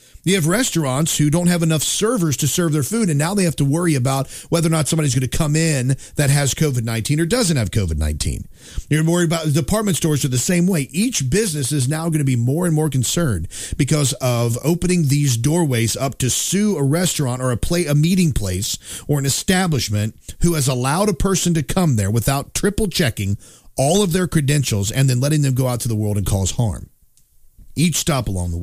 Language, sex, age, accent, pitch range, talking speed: English, male, 40-59, American, 115-165 Hz, 215 wpm